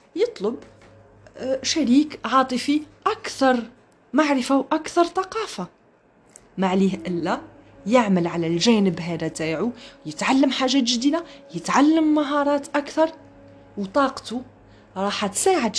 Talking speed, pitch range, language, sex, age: 90 wpm, 175-290 Hz, Arabic, female, 30-49